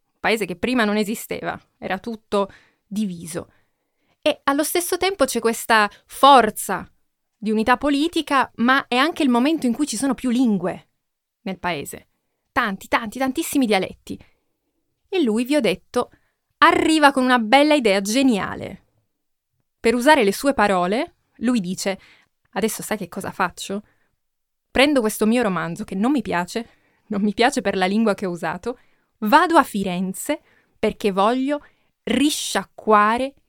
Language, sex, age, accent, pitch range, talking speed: Italian, female, 20-39, native, 205-265 Hz, 145 wpm